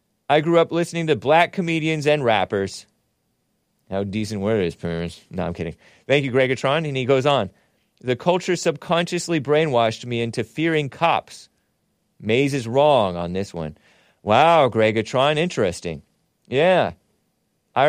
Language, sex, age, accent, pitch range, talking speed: English, male, 30-49, American, 105-150 Hz, 140 wpm